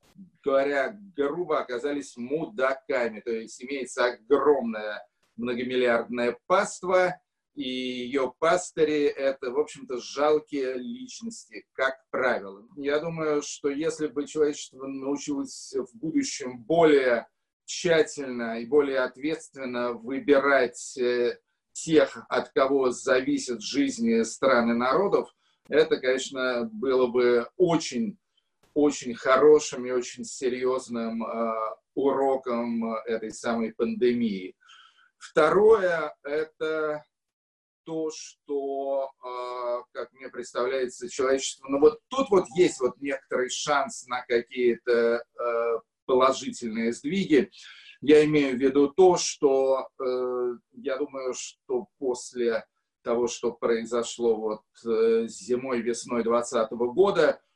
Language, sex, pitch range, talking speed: Russian, male, 120-155 Hz, 105 wpm